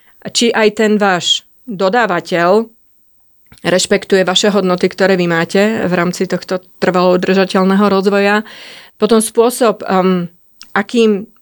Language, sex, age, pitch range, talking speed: Slovak, female, 30-49, 180-215 Hz, 105 wpm